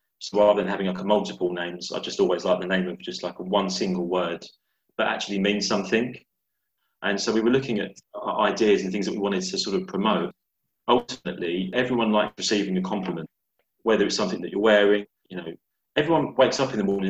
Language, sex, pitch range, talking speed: English, male, 95-110 Hz, 215 wpm